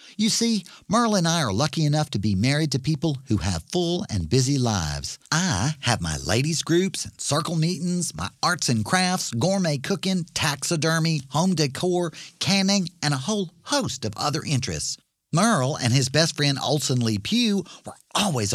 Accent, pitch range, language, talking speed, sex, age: American, 115-170 Hz, English, 175 wpm, male, 50-69